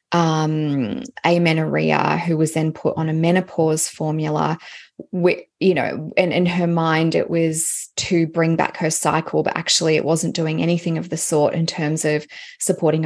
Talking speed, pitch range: 170 wpm, 160-190 Hz